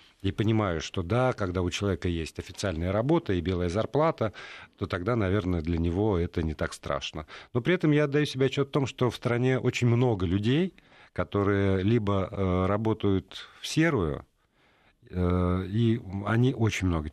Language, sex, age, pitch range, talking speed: Russian, male, 50-69, 95-115 Hz, 170 wpm